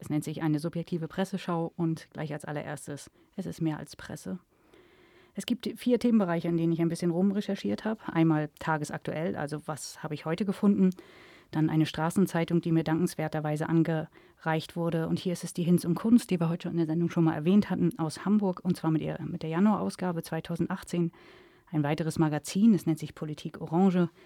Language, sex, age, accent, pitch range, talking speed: German, female, 30-49, German, 160-190 Hz, 200 wpm